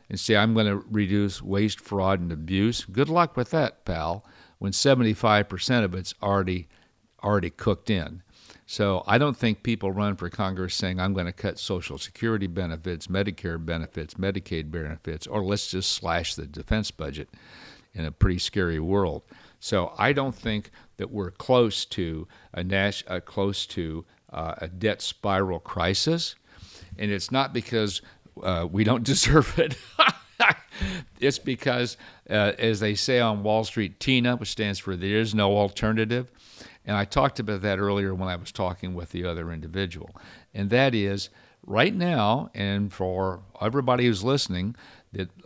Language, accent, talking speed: English, American, 165 wpm